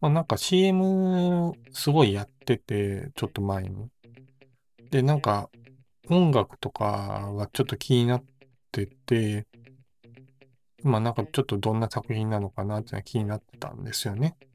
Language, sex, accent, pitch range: Japanese, male, native, 105-135 Hz